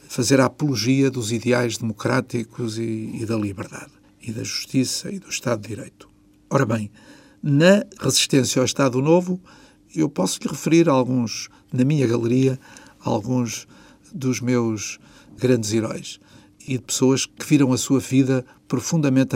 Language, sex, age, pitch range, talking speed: Portuguese, male, 50-69, 115-135 Hz, 150 wpm